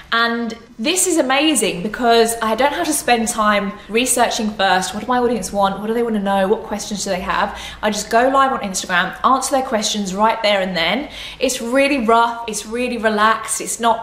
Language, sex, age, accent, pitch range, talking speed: English, female, 20-39, British, 195-245 Hz, 215 wpm